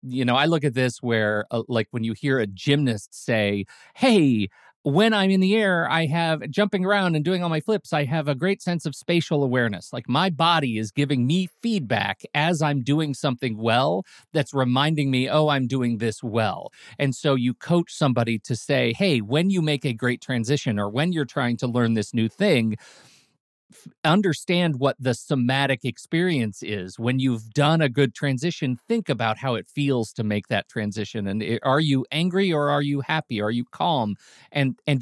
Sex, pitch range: male, 120-160 Hz